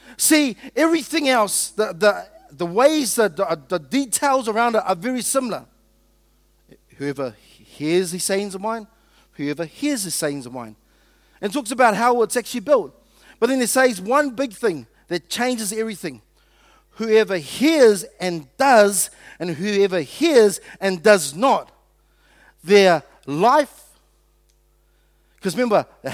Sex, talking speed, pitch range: male, 140 wpm, 170-240 Hz